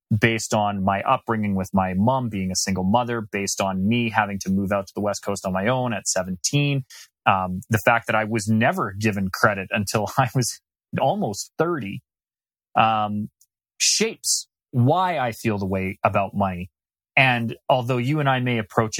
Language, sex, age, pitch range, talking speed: English, male, 30-49, 105-140 Hz, 180 wpm